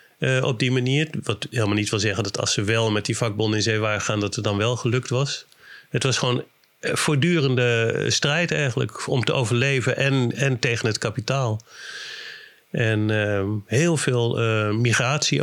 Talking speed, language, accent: 180 wpm, Dutch, Dutch